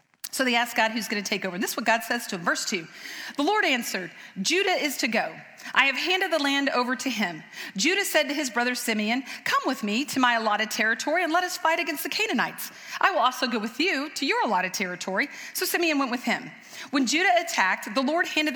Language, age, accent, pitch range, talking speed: English, 40-59, American, 225-310 Hz, 245 wpm